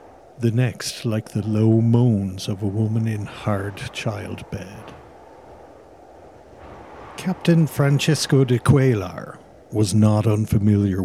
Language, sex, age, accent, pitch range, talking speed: English, male, 60-79, Irish, 105-130 Hz, 105 wpm